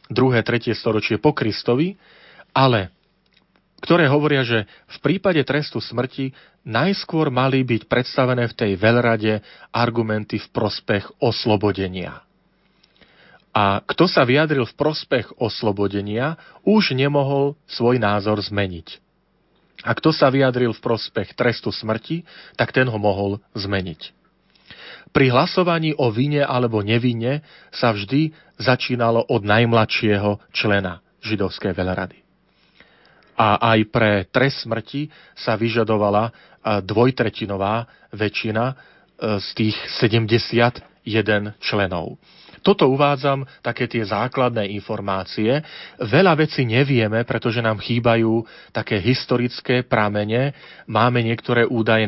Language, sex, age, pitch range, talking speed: Slovak, male, 40-59, 105-130 Hz, 110 wpm